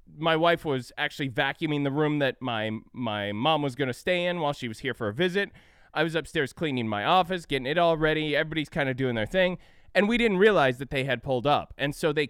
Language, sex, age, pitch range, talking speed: English, male, 20-39, 140-185 Hz, 245 wpm